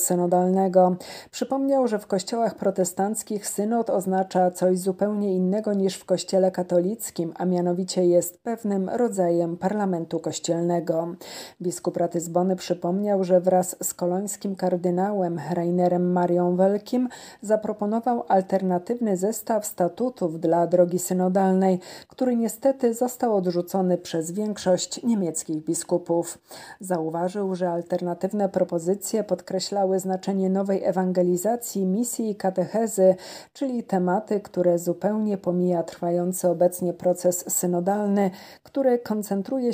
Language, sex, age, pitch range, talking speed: Polish, female, 40-59, 175-205 Hz, 105 wpm